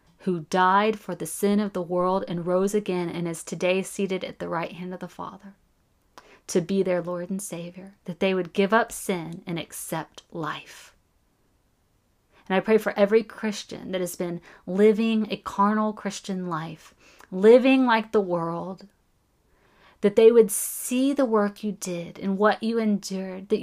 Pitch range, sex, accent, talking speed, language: 180-220 Hz, female, American, 175 wpm, English